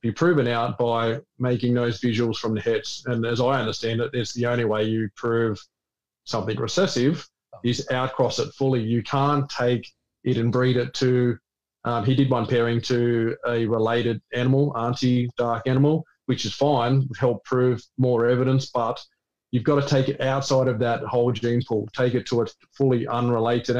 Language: English